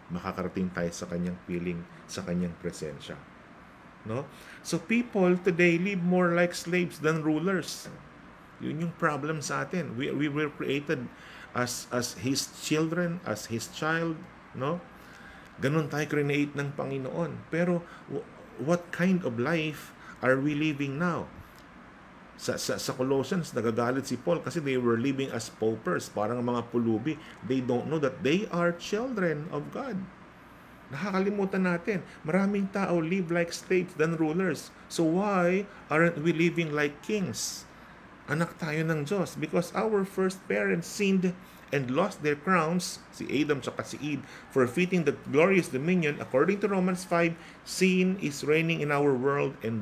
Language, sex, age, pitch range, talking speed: Filipino, male, 50-69, 135-180 Hz, 150 wpm